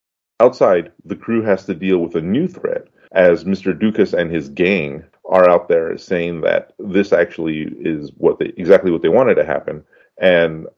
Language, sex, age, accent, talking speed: English, male, 30-49, American, 185 wpm